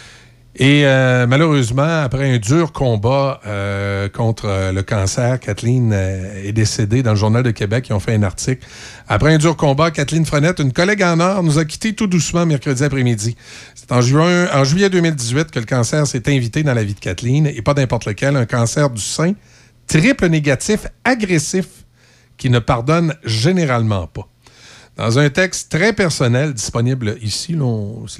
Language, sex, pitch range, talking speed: French, male, 110-155 Hz, 175 wpm